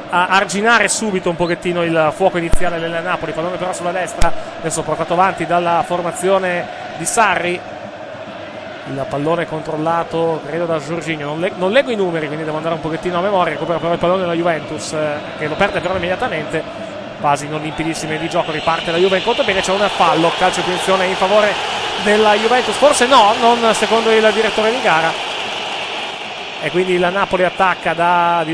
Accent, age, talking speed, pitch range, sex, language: native, 30-49, 180 wpm, 170-220 Hz, male, Italian